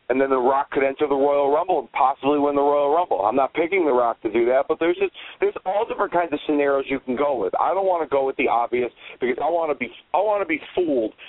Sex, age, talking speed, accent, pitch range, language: male, 40-59, 280 wpm, American, 135-185 Hz, English